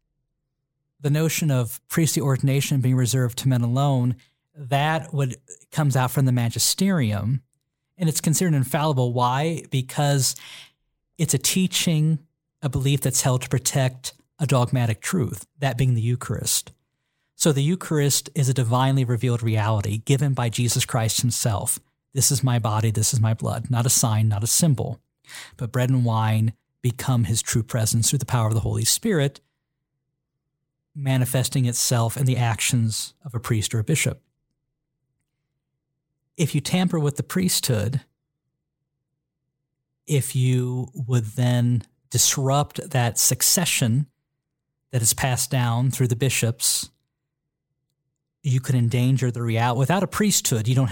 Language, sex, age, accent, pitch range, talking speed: English, male, 50-69, American, 125-145 Hz, 145 wpm